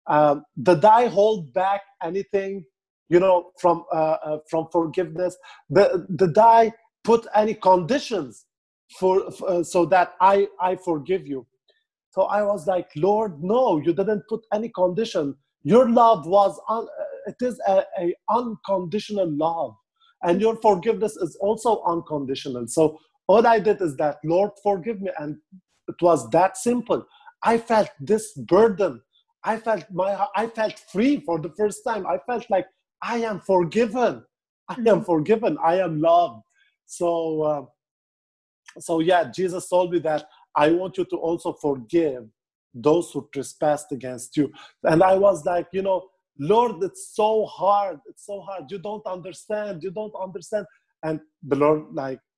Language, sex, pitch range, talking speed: English, male, 165-215 Hz, 155 wpm